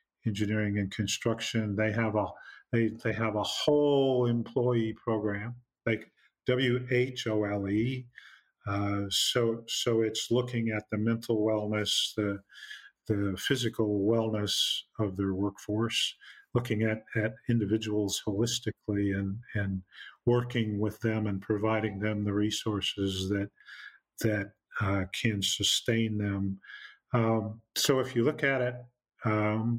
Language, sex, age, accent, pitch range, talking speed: English, male, 40-59, American, 105-115 Hz, 125 wpm